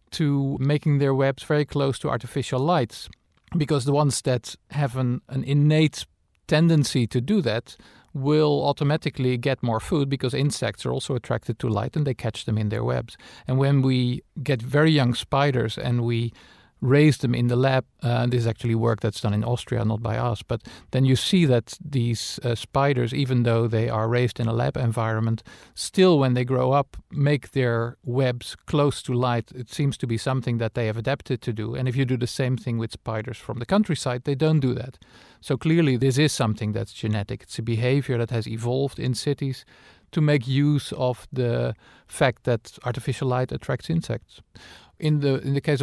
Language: English